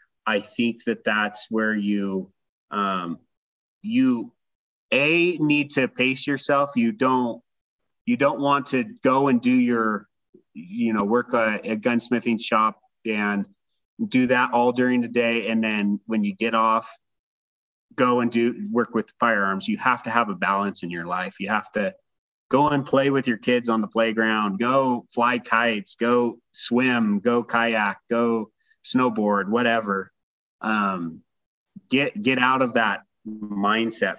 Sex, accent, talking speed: male, American, 155 wpm